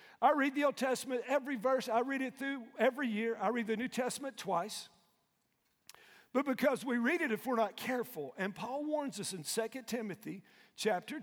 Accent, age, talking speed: American, 50-69, 190 wpm